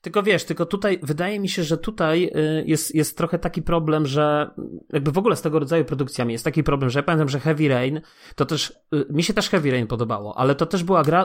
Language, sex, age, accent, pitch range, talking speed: Polish, male, 30-49, native, 135-165 Hz, 235 wpm